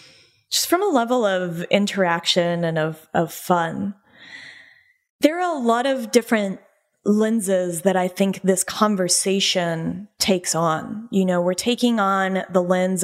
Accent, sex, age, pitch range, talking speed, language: American, female, 10-29, 180-220 Hz, 145 wpm, English